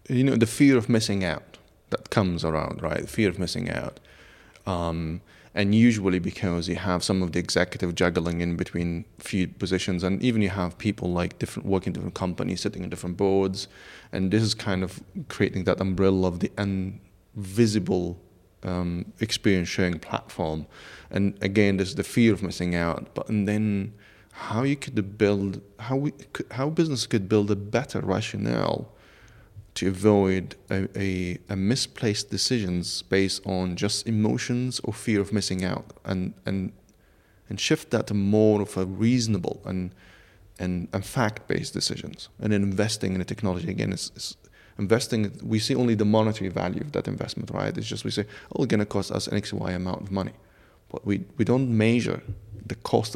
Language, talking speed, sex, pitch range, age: English, 175 wpm, male, 95-110 Hz, 30-49